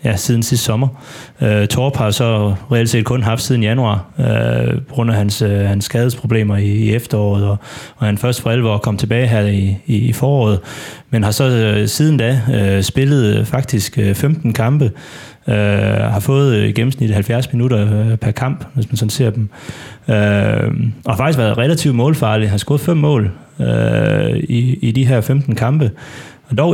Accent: native